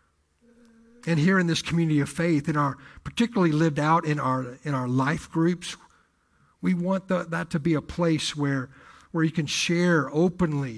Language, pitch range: English, 130-160 Hz